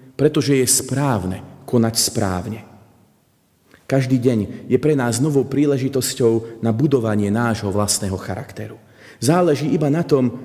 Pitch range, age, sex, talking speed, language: 105-135 Hz, 40-59, male, 120 wpm, Slovak